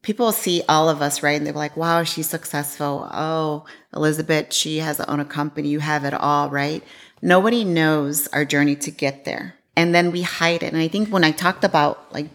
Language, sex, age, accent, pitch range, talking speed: English, female, 40-59, American, 145-165 Hz, 220 wpm